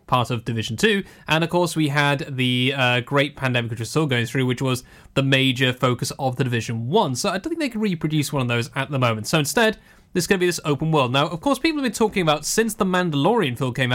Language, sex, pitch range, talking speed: English, male, 130-185 Hz, 270 wpm